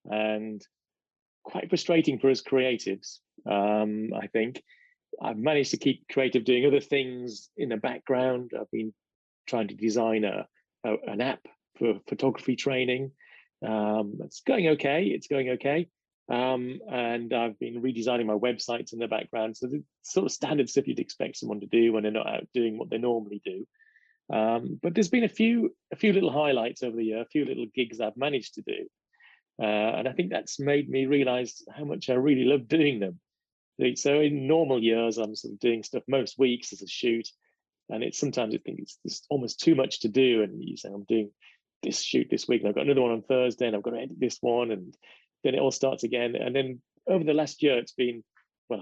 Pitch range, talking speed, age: 115-140 Hz, 210 wpm, 30-49